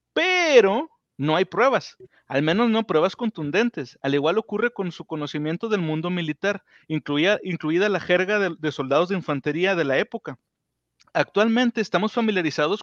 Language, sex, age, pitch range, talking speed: Spanish, male, 40-59, 155-220 Hz, 155 wpm